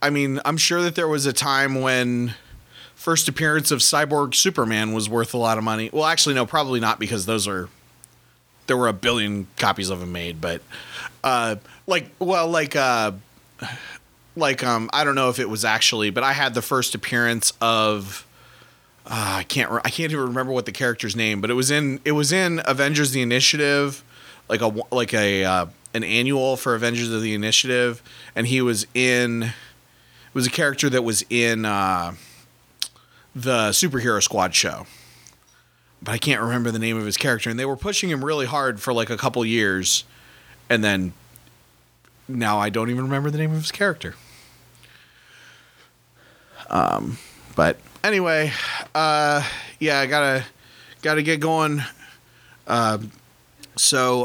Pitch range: 115-145 Hz